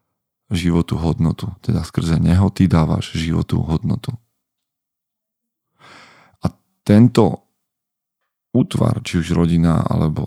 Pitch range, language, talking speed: 85-105 Hz, Slovak, 95 wpm